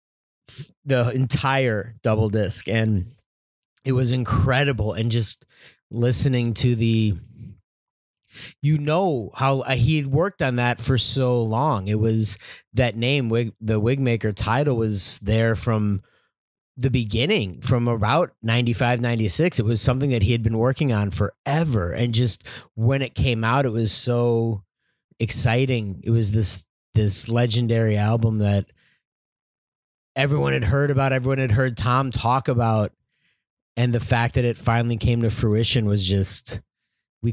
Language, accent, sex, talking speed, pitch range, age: English, American, male, 145 wpm, 110-130 Hz, 30-49